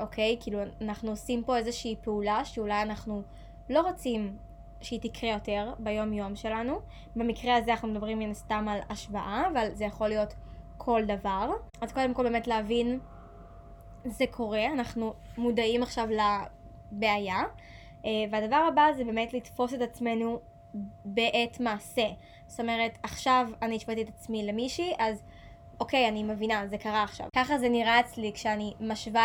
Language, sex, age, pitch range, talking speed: Hebrew, female, 20-39, 215-250 Hz, 150 wpm